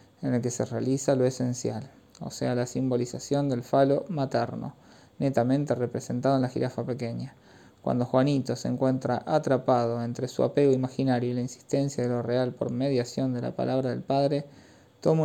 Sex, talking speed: male, 170 wpm